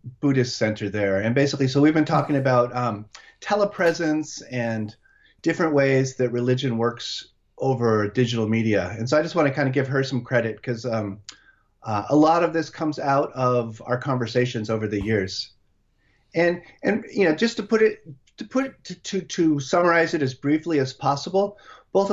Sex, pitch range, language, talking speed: male, 120-160 Hz, English, 185 wpm